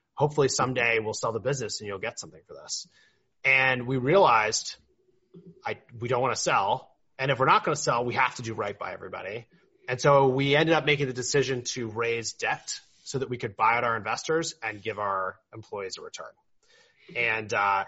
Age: 30-49